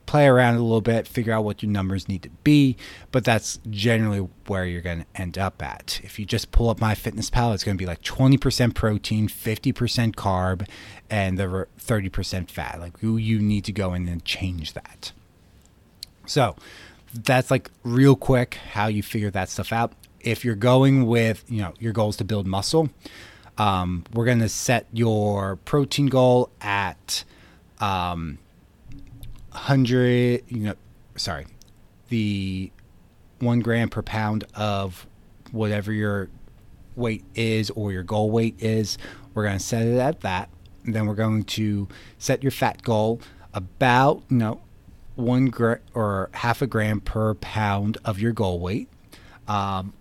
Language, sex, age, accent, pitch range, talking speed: English, male, 30-49, American, 95-115 Hz, 165 wpm